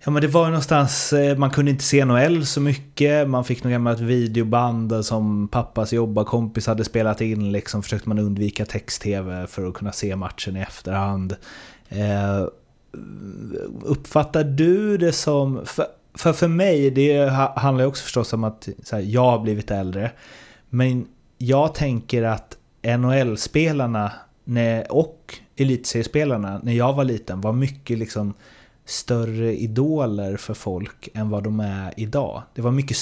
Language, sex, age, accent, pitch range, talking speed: Swedish, male, 30-49, native, 105-135 Hz, 160 wpm